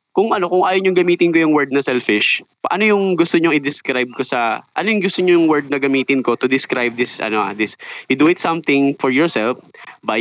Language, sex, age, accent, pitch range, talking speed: Filipino, male, 20-39, native, 110-150 Hz, 230 wpm